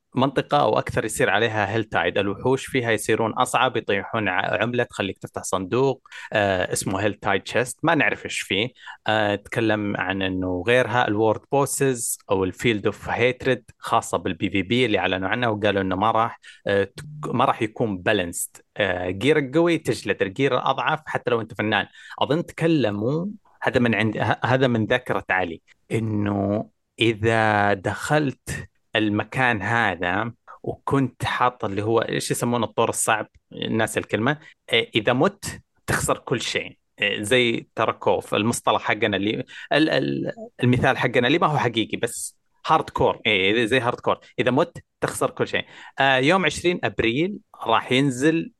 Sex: male